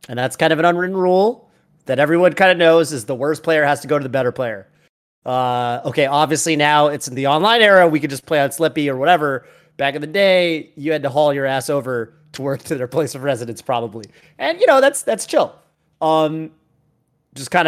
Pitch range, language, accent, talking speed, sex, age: 125-165 Hz, English, American, 230 wpm, male, 30-49